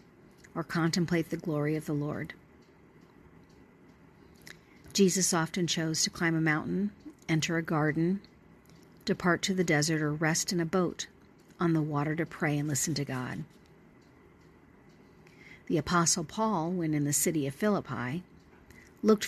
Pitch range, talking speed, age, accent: 155-185 Hz, 140 wpm, 50-69, American